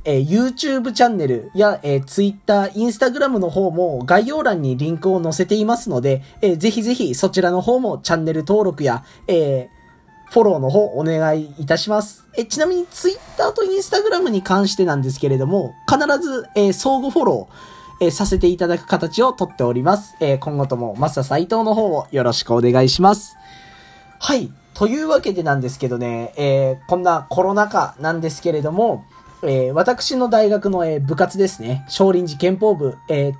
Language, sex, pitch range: Japanese, male, 155-240 Hz